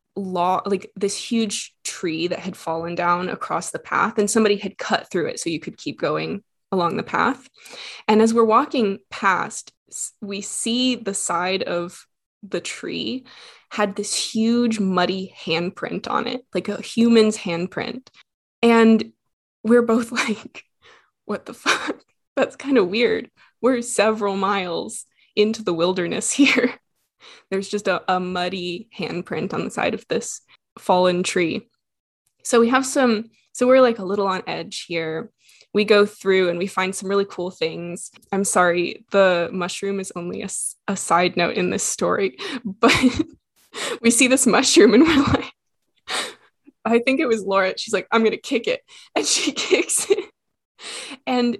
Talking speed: 160 wpm